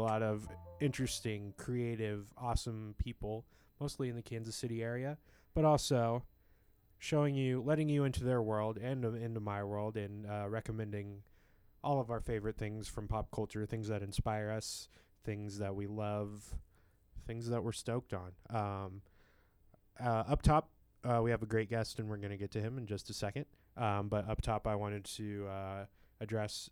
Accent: American